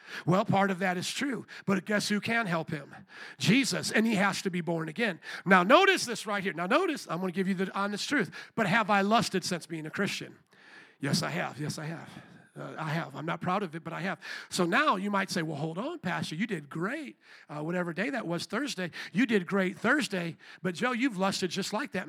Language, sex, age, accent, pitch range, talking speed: English, male, 50-69, American, 180-220 Hz, 240 wpm